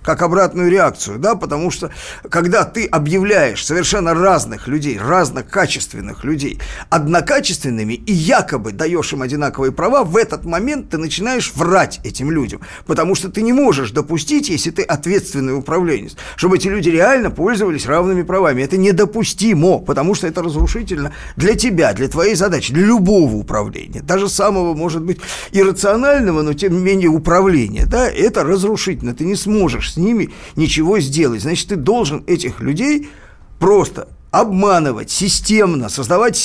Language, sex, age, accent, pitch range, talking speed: Russian, male, 50-69, native, 155-210 Hz, 145 wpm